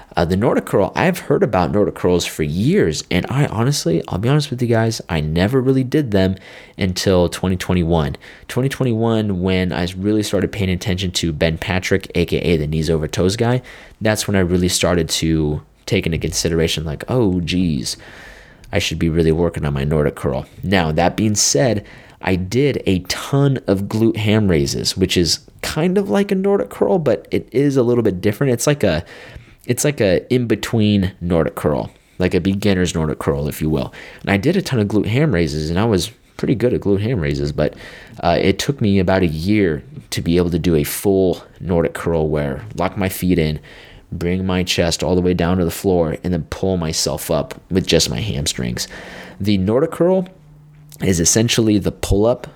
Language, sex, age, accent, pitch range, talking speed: English, male, 20-39, American, 85-110 Hz, 200 wpm